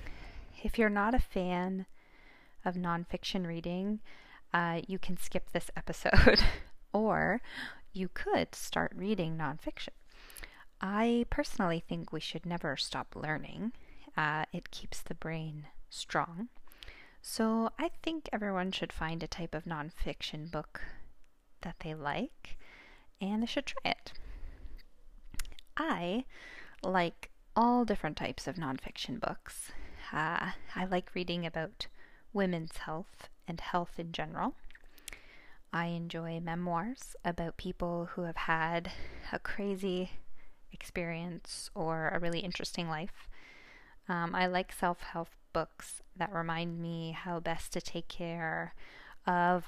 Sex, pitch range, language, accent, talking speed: female, 165-195 Hz, English, American, 125 wpm